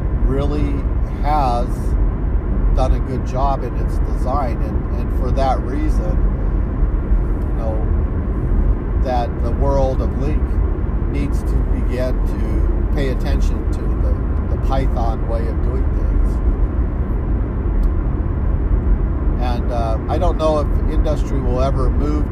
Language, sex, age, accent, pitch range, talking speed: English, male, 50-69, American, 65-80 Hz, 120 wpm